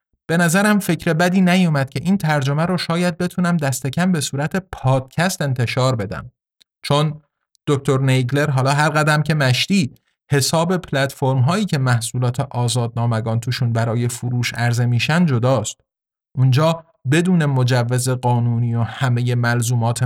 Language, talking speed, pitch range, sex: Persian, 135 wpm, 120-165 Hz, male